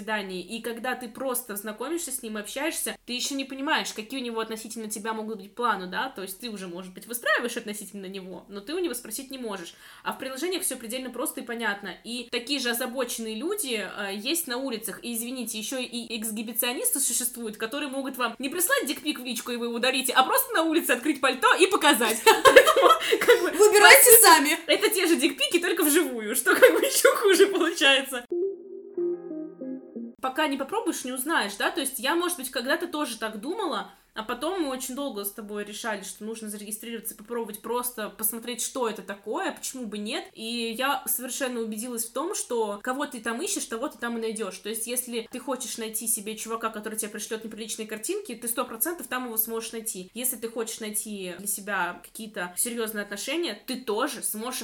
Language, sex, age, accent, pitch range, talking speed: Russian, female, 20-39, native, 220-290 Hz, 195 wpm